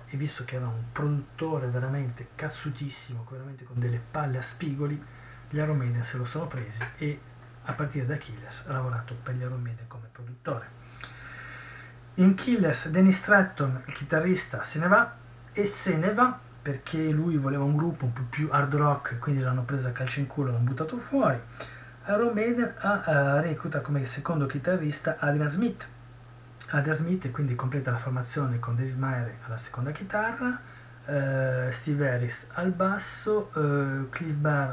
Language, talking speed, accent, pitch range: Italian, 170 wpm, native, 125-155 Hz